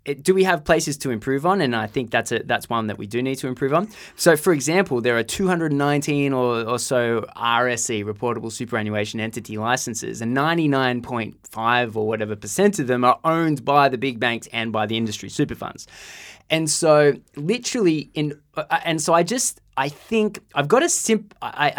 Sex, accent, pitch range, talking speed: male, Australian, 115-160 Hz, 210 wpm